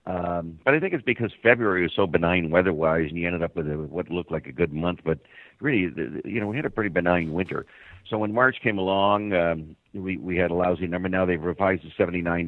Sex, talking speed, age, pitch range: male, 235 wpm, 60-79, 80-100 Hz